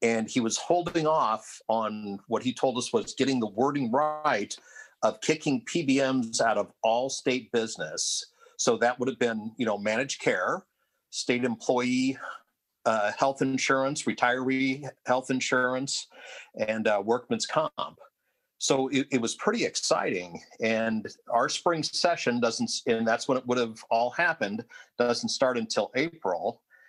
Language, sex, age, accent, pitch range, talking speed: English, male, 50-69, American, 110-140 Hz, 150 wpm